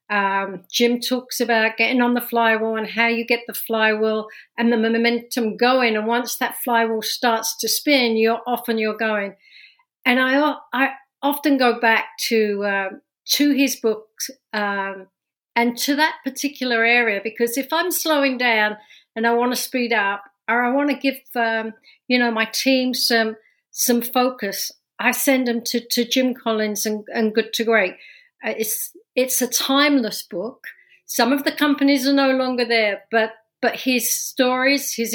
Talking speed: 175 wpm